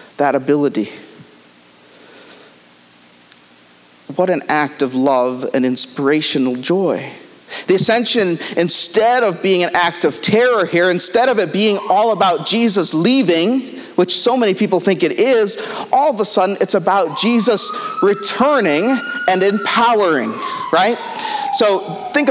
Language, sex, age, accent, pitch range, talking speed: English, male, 40-59, American, 175-245 Hz, 130 wpm